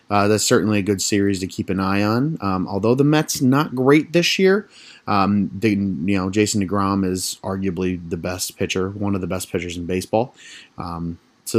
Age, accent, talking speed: 30-49, American, 200 wpm